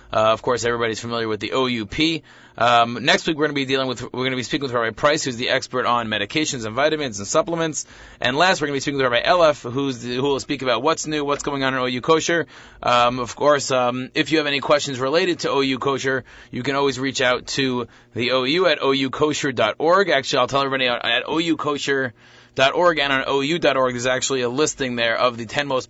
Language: English